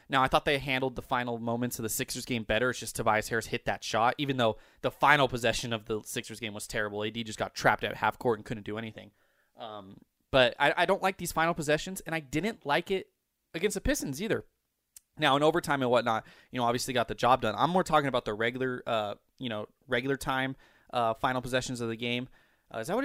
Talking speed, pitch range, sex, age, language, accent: 240 wpm, 120-185 Hz, male, 20-39, English, American